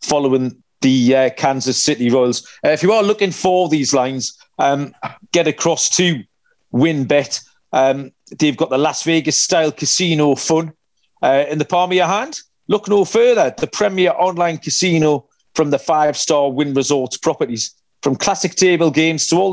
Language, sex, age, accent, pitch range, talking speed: English, male, 40-59, British, 145-180 Hz, 165 wpm